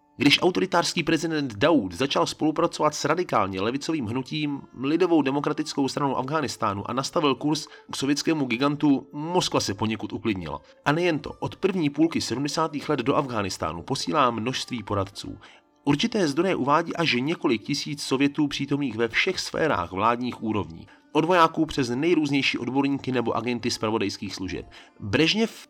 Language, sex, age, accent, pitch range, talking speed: Czech, male, 30-49, native, 115-160 Hz, 140 wpm